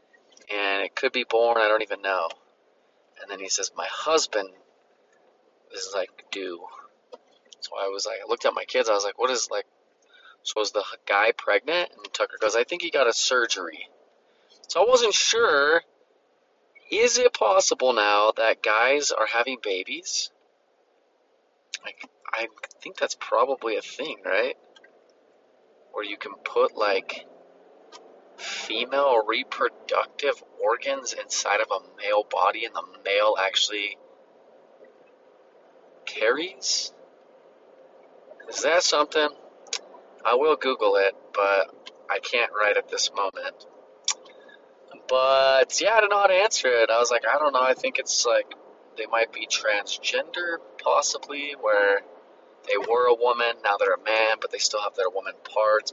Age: 30-49